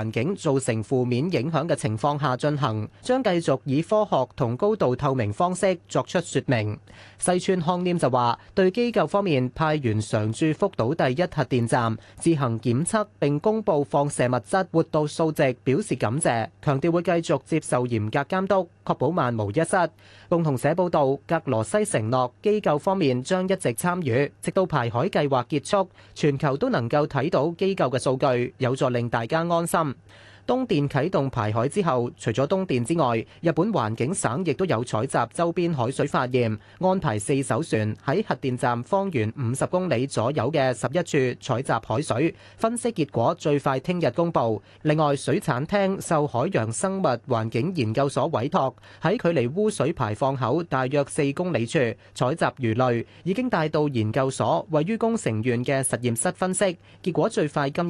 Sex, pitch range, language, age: male, 125-175 Hz, Chinese, 30-49